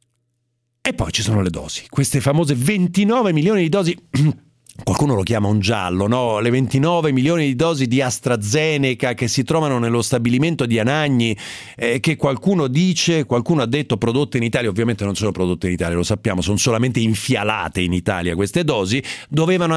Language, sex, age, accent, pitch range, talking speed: Italian, male, 40-59, native, 105-145 Hz, 175 wpm